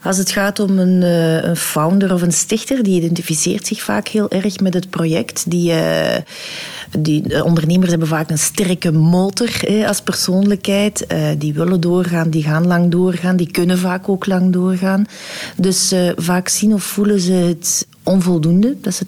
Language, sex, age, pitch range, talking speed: Dutch, female, 40-59, 160-190 Hz, 175 wpm